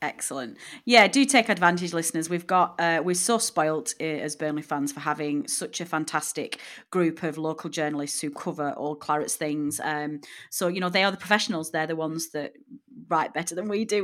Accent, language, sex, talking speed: British, English, female, 200 wpm